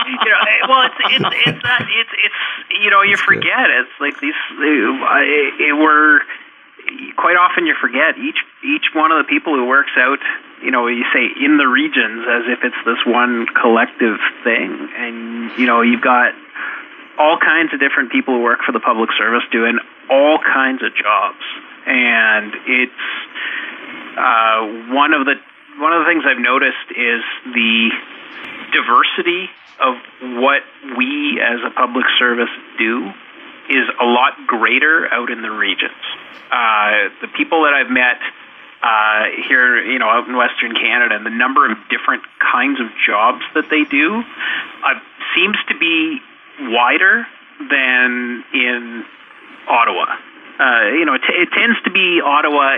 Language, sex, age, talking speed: English, male, 30-49, 160 wpm